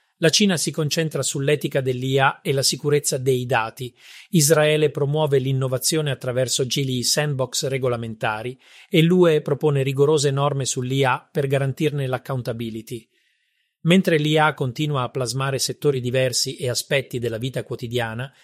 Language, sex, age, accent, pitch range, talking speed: Italian, male, 40-59, native, 125-155 Hz, 125 wpm